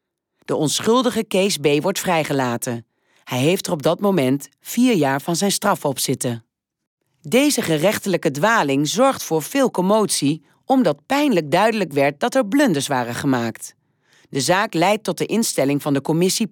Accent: Dutch